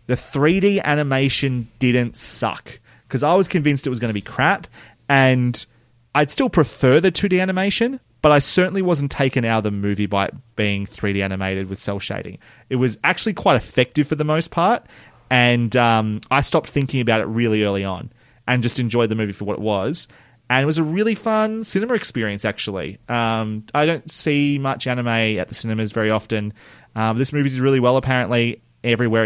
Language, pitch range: English, 110-140 Hz